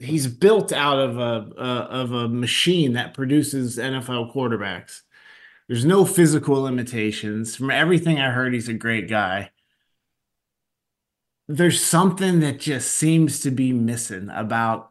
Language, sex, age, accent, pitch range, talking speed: English, male, 30-49, American, 115-140 Hz, 135 wpm